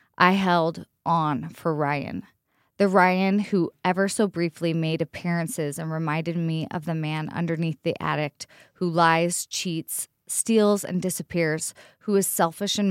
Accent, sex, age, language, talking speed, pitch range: American, female, 20-39, English, 150 wpm, 160-195 Hz